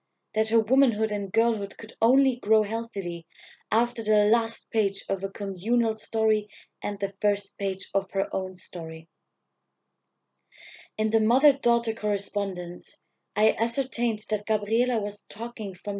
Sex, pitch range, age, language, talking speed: female, 195-240 Hz, 20-39, English, 135 wpm